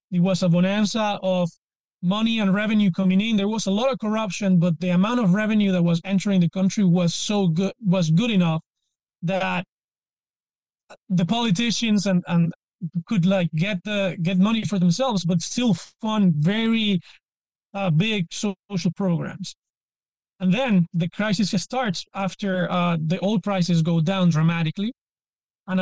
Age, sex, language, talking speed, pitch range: 30-49, male, English, 155 wpm, 175-205 Hz